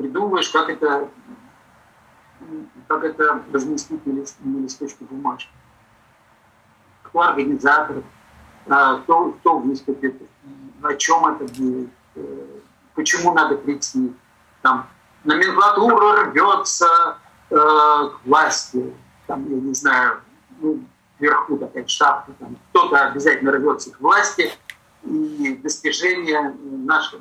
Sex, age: male, 50-69